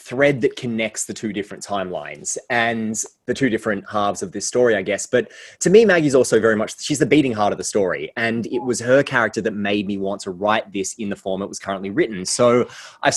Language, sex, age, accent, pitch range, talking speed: English, male, 20-39, Australian, 100-125 Hz, 235 wpm